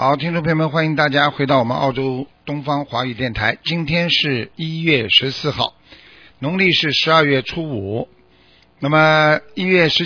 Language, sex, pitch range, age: Chinese, male, 110-150 Hz, 50-69